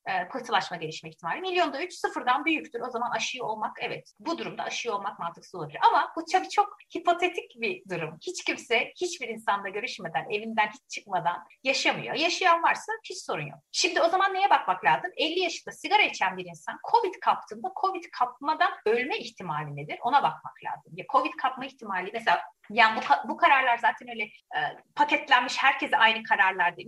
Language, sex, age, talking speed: Turkish, female, 30-49, 175 wpm